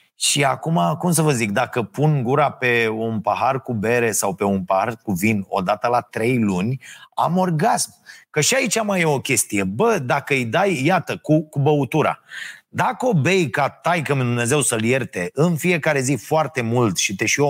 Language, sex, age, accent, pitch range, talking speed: Romanian, male, 30-49, native, 120-185 Hz, 200 wpm